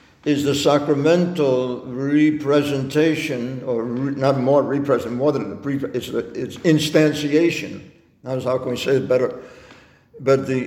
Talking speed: 130 wpm